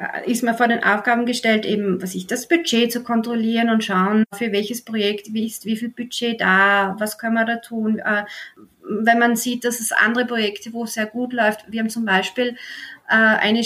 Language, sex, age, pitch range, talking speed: German, female, 20-39, 215-245 Hz, 200 wpm